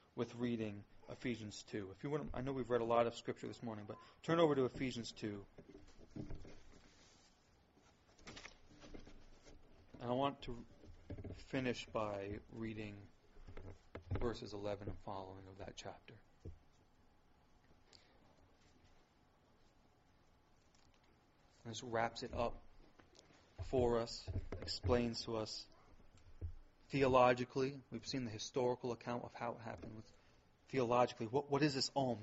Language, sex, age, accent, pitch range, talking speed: English, male, 30-49, American, 100-125 Hz, 120 wpm